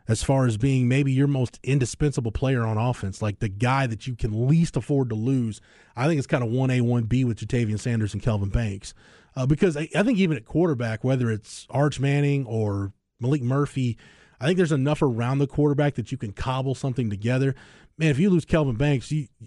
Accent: American